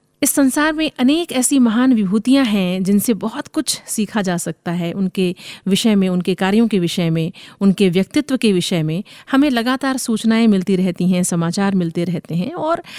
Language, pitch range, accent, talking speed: Hindi, 185-245 Hz, native, 180 wpm